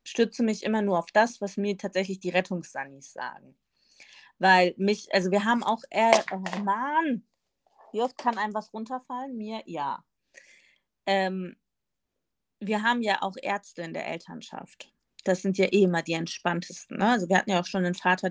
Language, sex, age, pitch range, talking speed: German, female, 20-39, 180-220 Hz, 175 wpm